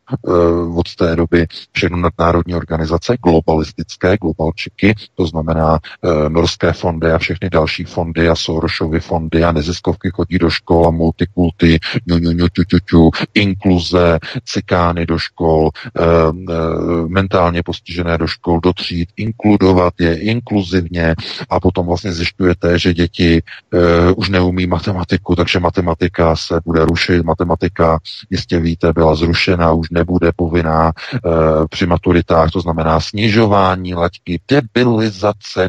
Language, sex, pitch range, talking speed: Czech, male, 85-105 Hz, 120 wpm